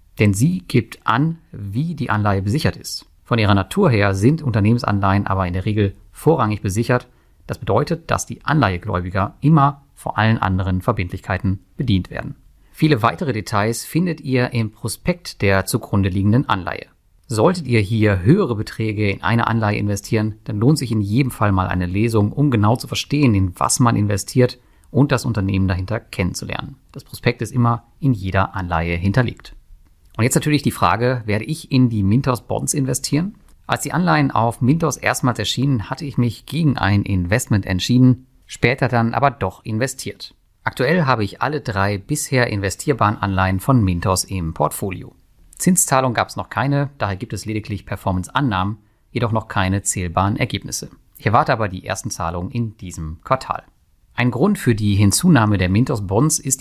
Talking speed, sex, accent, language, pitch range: 170 wpm, male, German, German, 100-130 Hz